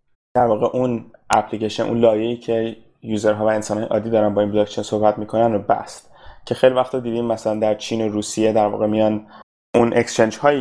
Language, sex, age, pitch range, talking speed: Persian, male, 20-39, 105-120 Hz, 185 wpm